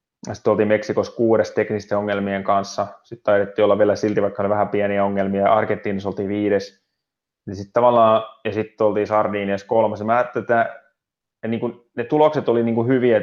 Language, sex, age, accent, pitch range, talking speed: Finnish, male, 20-39, native, 100-115 Hz, 140 wpm